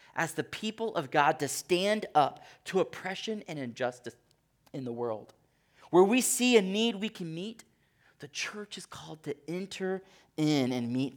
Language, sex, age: English, male, 30-49